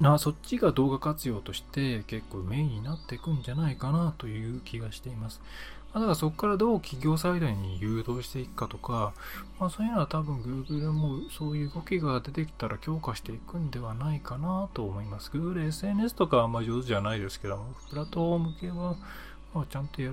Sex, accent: male, native